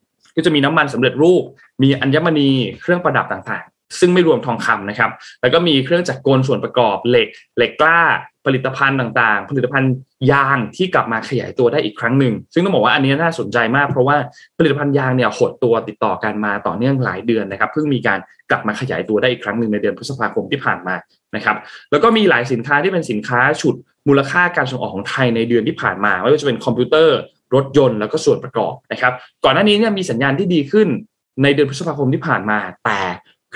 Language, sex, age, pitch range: Thai, male, 20-39, 115-155 Hz